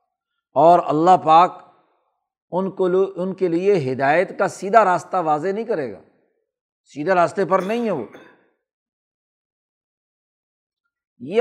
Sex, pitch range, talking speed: male, 170-225 Hz, 120 wpm